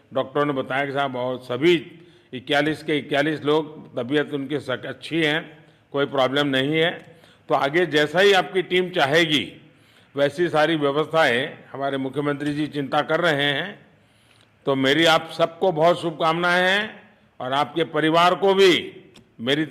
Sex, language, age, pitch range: male, Hindi, 50-69, 140-165 Hz